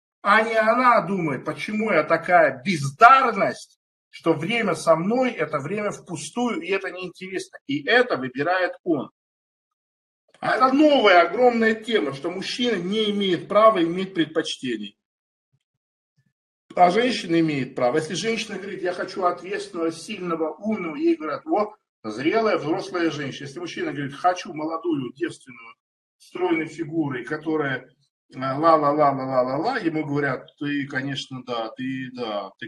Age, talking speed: 50-69, 130 wpm